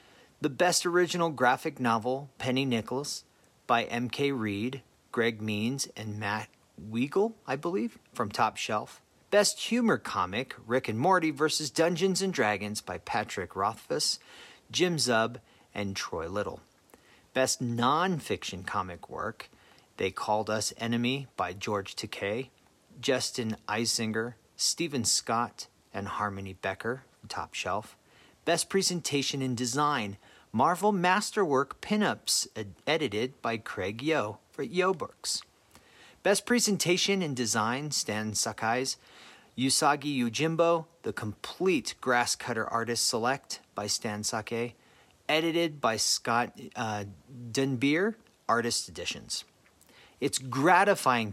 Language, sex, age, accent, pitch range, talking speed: English, male, 40-59, American, 110-155 Hz, 115 wpm